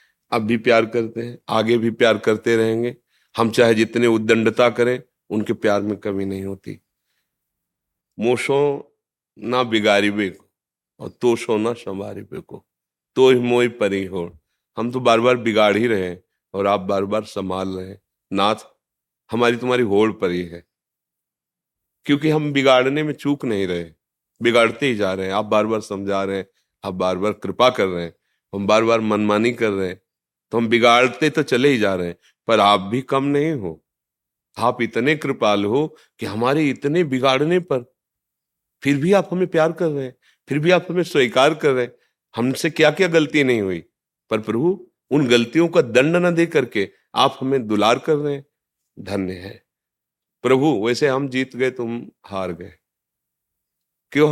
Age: 40-59